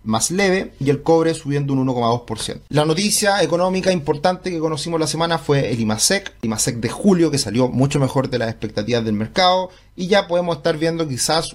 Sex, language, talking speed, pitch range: male, Spanish, 190 wpm, 115-145 Hz